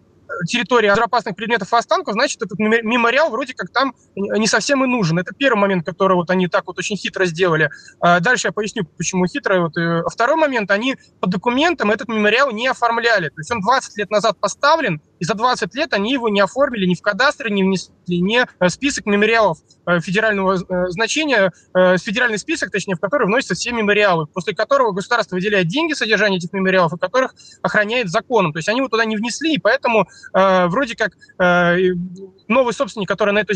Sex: male